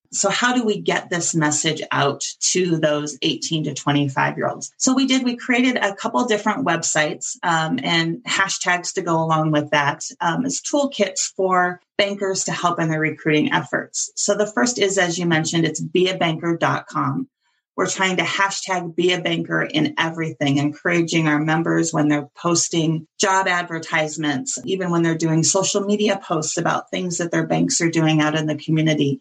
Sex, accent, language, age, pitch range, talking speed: female, American, English, 30-49, 150-190 Hz, 175 wpm